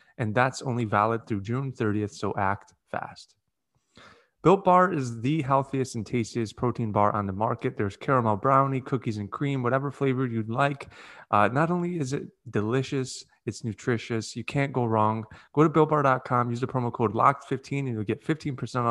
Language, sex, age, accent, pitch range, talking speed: English, male, 20-39, American, 110-140 Hz, 180 wpm